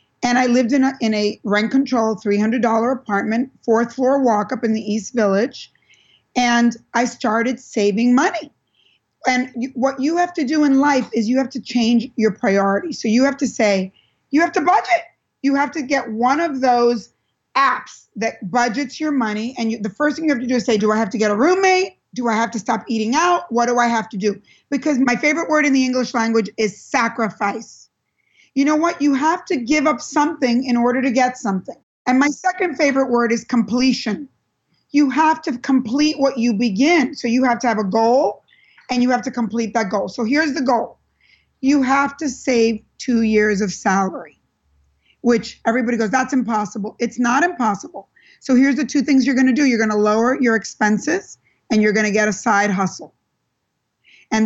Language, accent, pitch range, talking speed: English, American, 225-275 Hz, 205 wpm